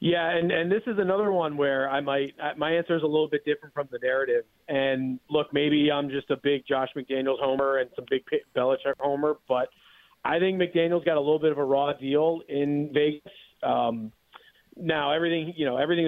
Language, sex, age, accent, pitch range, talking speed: English, male, 40-59, American, 135-170 Hz, 210 wpm